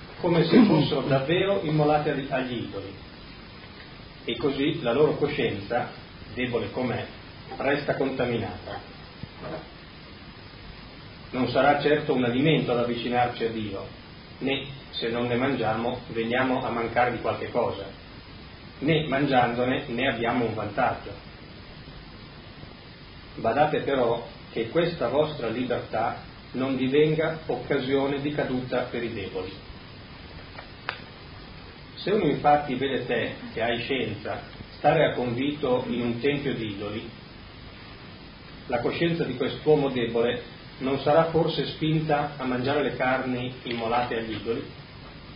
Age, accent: 40-59, native